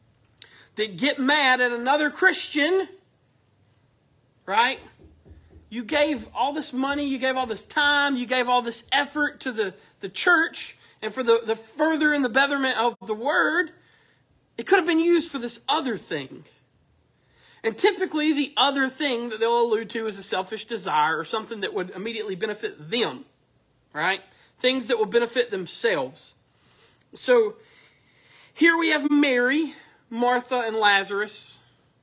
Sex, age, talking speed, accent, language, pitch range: male, 40-59, 150 wpm, American, English, 180-265 Hz